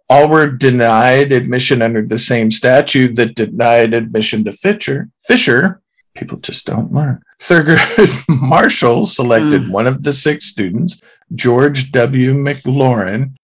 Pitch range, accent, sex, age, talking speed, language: 115-145 Hz, American, male, 50-69, 130 wpm, English